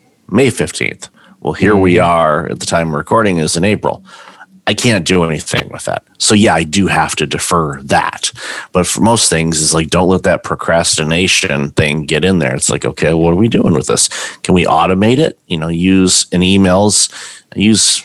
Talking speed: 205 wpm